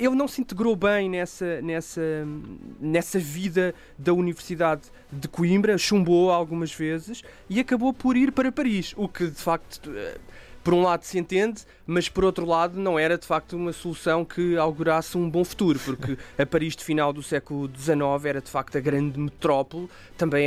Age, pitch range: 20-39, 155-180 Hz